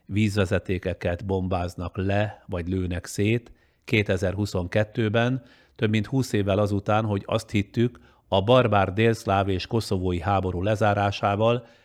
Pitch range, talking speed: 95-115 Hz, 110 wpm